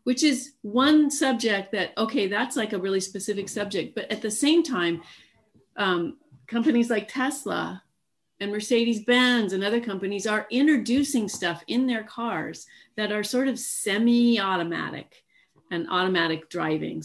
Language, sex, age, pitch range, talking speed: English, female, 40-59, 185-250 Hz, 140 wpm